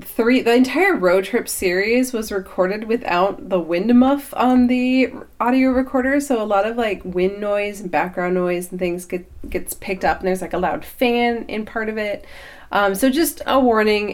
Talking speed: 200 wpm